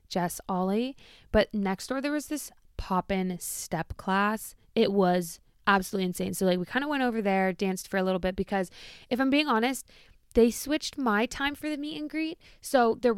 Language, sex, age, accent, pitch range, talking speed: English, female, 20-39, American, 195-245 Hz, 200 wpm